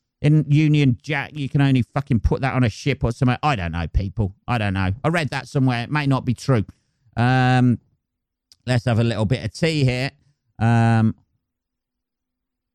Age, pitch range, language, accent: 40-59, 125-150 Hz, English, British